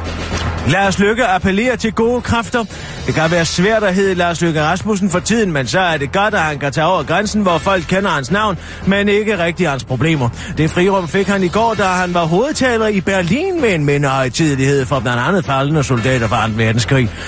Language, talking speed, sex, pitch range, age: Danish, 220 wpm, male, 155-205 Hz, 30-49